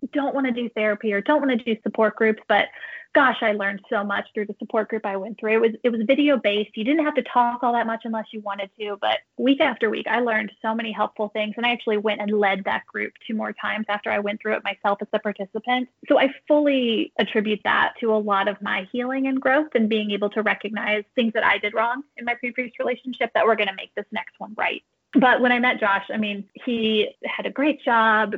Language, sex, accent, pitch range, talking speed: English, female, American, 205-245 Hz, 255 wpm